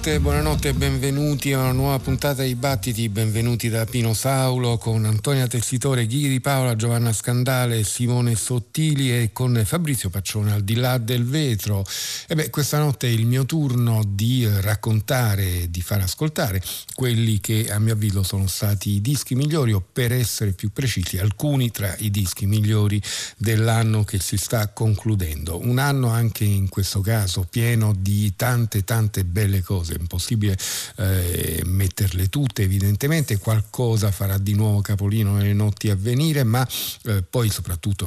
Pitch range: 100-120 Hz